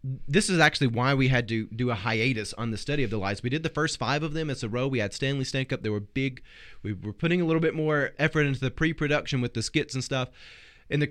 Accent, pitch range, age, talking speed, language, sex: American, 115-145 Hz, 20-39, 275 wpm, English, male